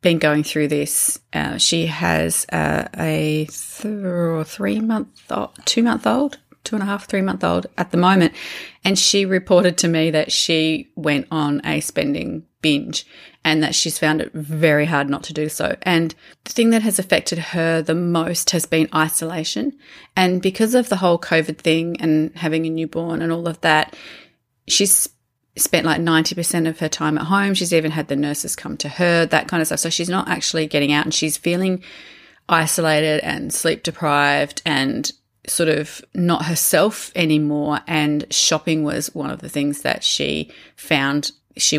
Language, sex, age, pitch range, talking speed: English, female, 30-49, 150-175 Hz, 180 wpm